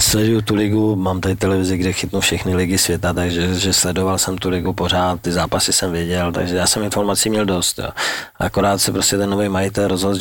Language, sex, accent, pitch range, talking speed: Czech, male, native, 90-100 Hz, 210 wpm